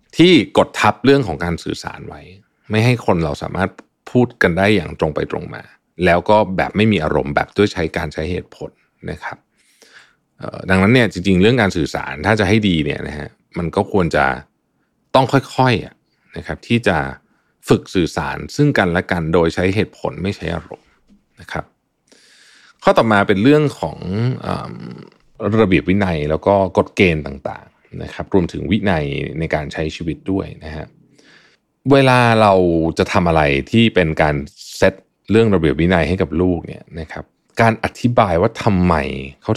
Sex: male